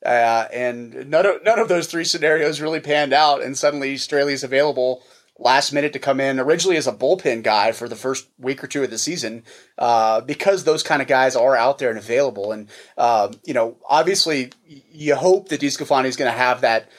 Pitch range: 120-150 Hz